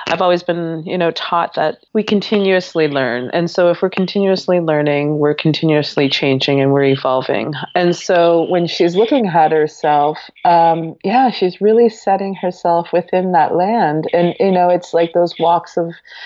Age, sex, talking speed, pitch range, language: 30-49, female, 170 wpm, 150-180 Hz, English